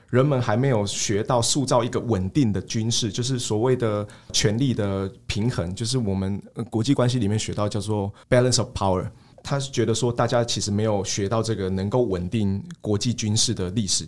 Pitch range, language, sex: 100-125 Hz, Chinese, male